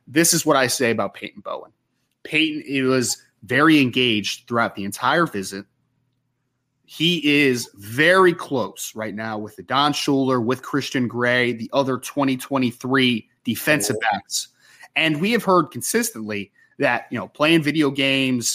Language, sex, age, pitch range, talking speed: English, male, 30-49, 125-165 Hz, 150 wpm